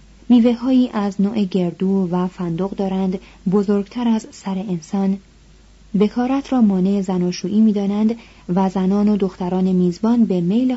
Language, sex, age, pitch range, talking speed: Persian, female, 30-49, 190-230 Hz, 130 wpm